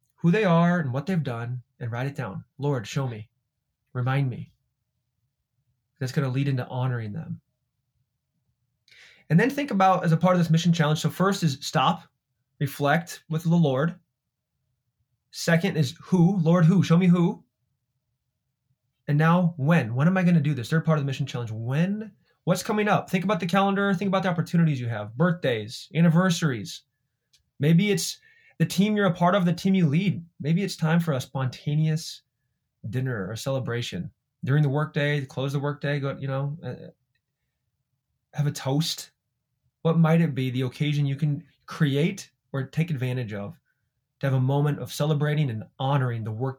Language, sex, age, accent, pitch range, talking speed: English, male, 20-39, American, 125-165 Hz, 180 wpm